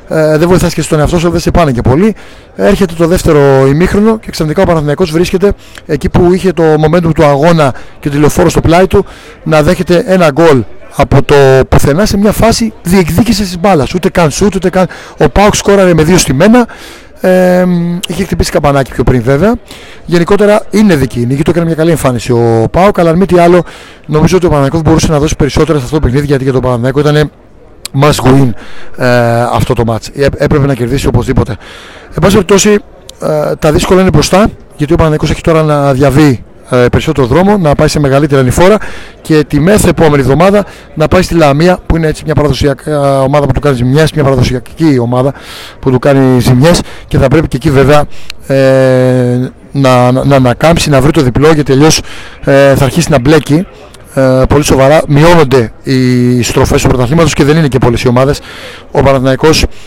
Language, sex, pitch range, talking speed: Greek, male, 130-175 Hz, 180 wpm